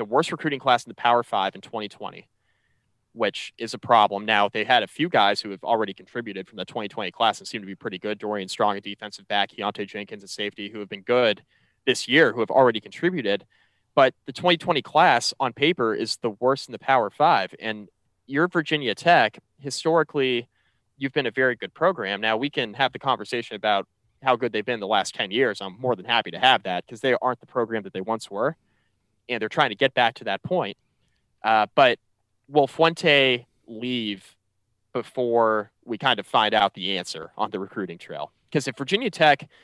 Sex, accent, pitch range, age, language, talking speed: male, American, 105-130 Hz, 20-39, English, 210 wpm